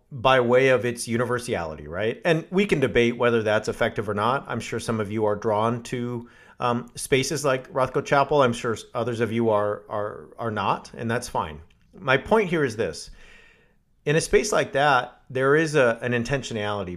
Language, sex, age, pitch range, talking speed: English, male, 40-59, 105-135 Hz, 195 wpm